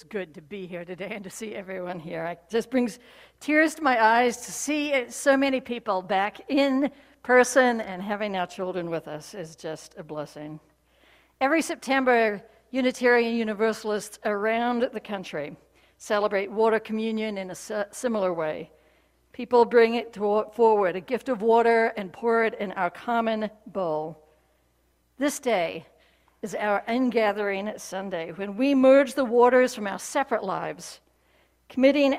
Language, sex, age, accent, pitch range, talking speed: English, female, 60-79, American, 180-235 Hz, 150 wpm